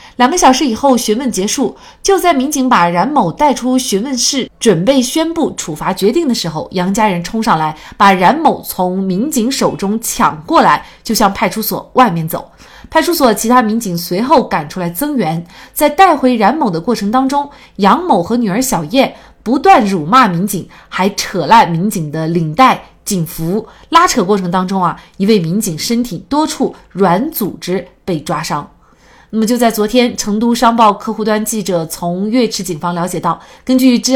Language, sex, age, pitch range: Chinese, female, 30-49, 185-255 Hz